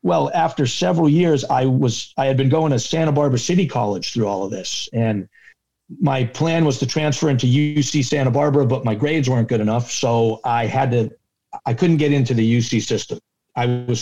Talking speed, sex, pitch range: 205 wpm, male, 115-145 Hz